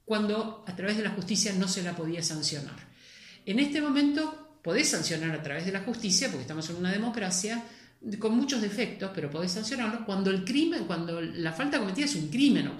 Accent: Argentinian